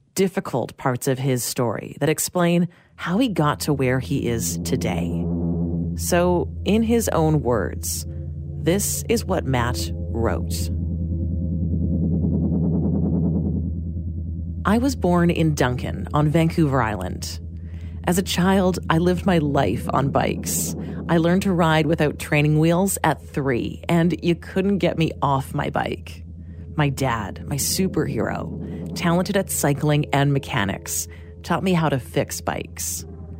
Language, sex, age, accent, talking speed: English, female, 30-49, American, 135 wpm